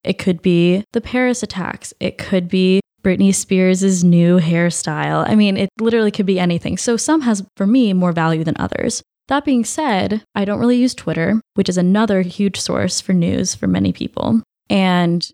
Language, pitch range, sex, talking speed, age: English, 175-200 Hz, female, 190 wpm, 20-39